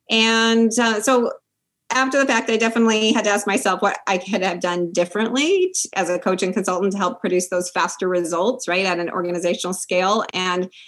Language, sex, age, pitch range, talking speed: English, female, 30-49, 185-230 Hz, 195 wpm